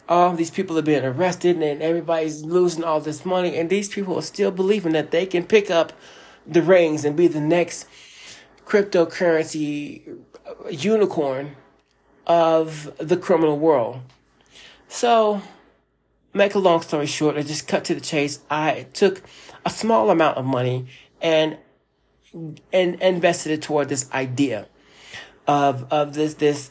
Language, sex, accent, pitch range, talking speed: English, male, American, 140-170 Hz, 150 wpm